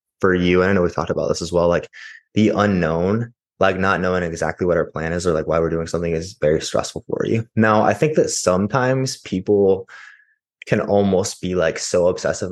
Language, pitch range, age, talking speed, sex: English, 85-100 Hz, 20-39, 215 wpm, male